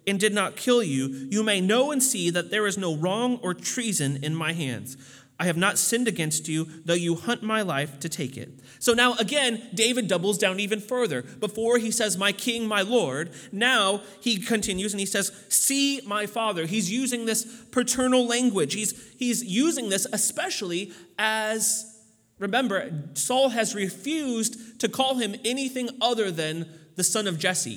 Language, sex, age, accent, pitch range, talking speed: English, male, 30-49, American, 175-230 Hz, 180 wpm